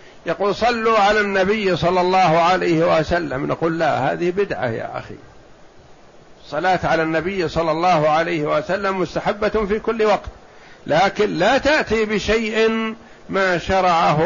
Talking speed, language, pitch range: 130 wpm, Arabic, 160-210 Hz